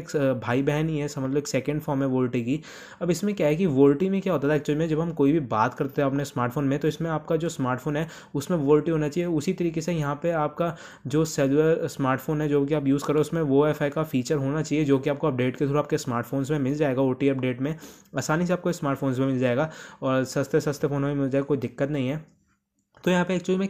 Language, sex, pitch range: Hindi, male, 135-160 Hz